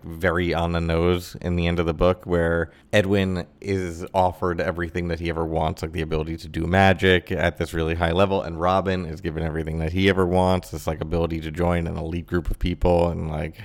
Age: 30-49